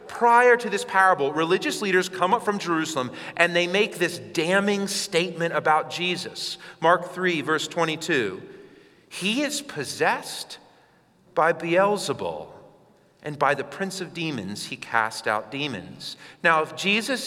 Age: 40-59